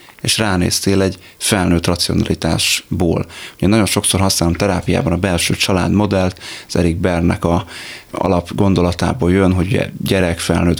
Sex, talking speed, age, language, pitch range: male, 130 wpm, 30-49, Hungarian, 85-100 Hz